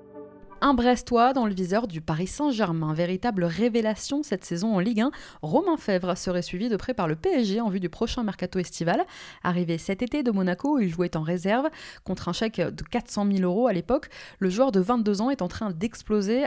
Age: 20-39